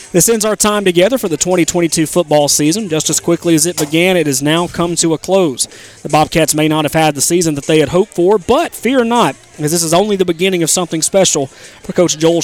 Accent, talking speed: American, 245 wpm